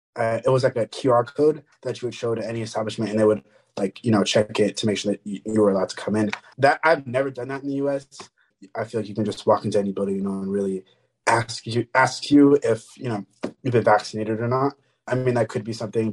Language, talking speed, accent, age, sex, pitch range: English, 270 wpm, American, 20-39, male, 105-125 Hz